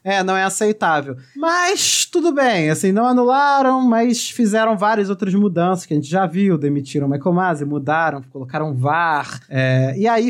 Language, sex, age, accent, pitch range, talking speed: Portuguese, male, 20-39, Brazilian, 150-225 Hz, 165 wpm